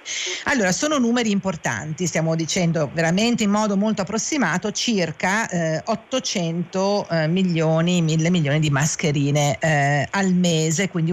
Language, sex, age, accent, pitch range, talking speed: Italian, female, 50-69, native, 160-200 Hz, 130 wpm